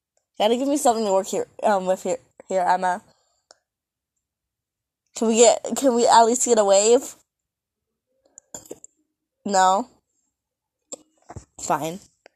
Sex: female